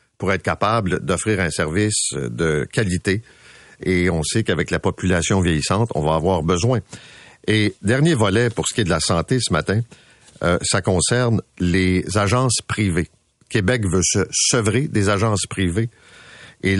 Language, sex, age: French, male, 50-69